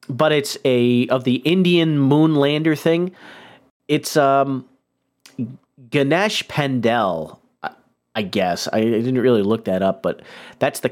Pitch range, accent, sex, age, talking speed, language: 120-160 Hz, American, male, 40-59, 145 wpm, English